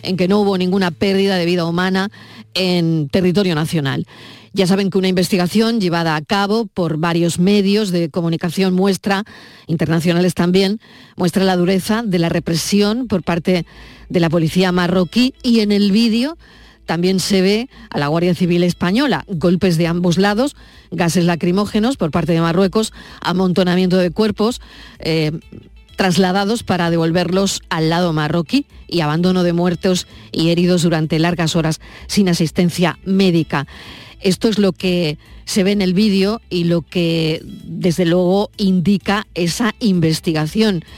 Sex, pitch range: female, 170-195 Hz